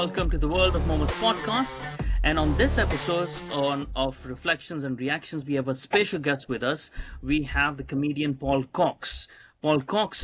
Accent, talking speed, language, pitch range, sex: Indian, 175 wpm, English, 135-160 Hz, male